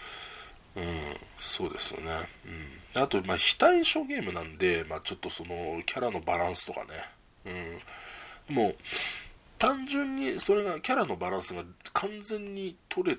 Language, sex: Japanese, male